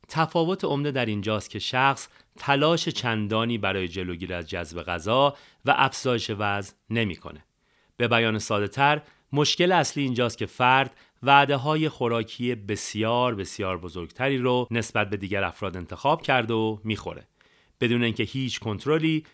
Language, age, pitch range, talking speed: Persian, 40-59, 100-140 Hz, 135 wpm